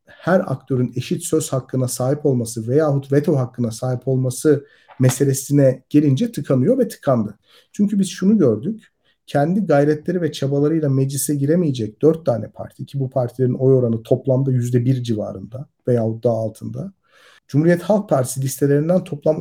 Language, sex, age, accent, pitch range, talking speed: Turkish, male, 50-69, native, 125-170 Hz, 140 wpm